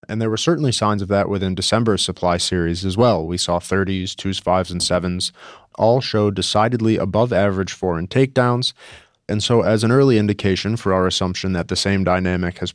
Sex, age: male, 30-49